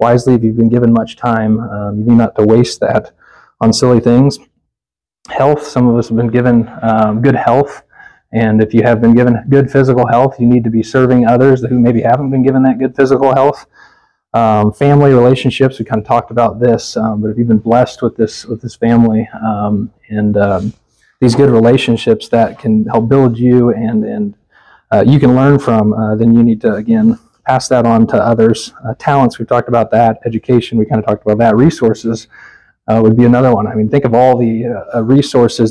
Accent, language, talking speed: American, English, 215 wpm